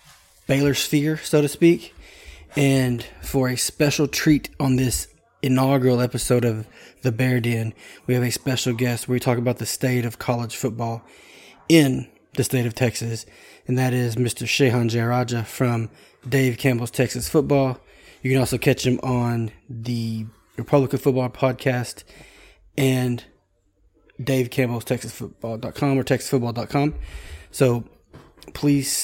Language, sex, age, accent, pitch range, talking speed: English, male, 20-39, American, 115-135 Hz, 125 wpm